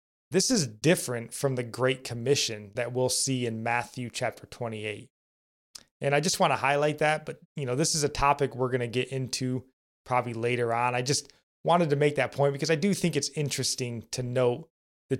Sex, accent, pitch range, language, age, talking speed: male, American, 115-145 Hz, English, 20-39, 205 wpm